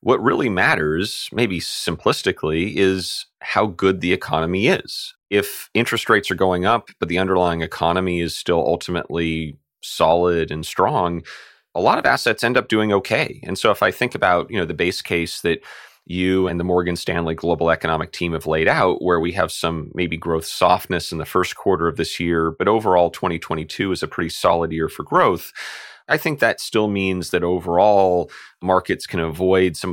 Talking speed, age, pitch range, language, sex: 185 wpm, 30-49, 80-90 Hz, English, male